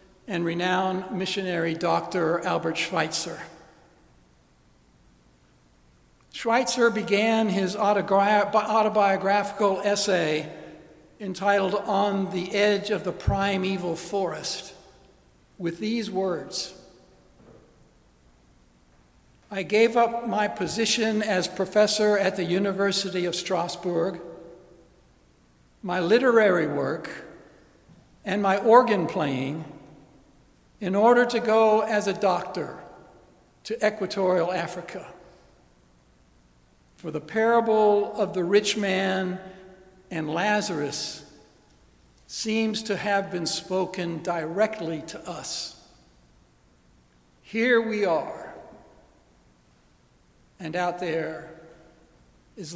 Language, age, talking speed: English, 60-79, 85 wpm